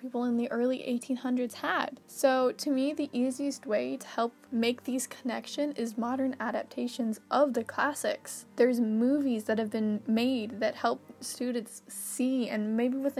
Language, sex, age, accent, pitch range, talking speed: English, female, 10-29, American, 230-265 Hz, 165 wpm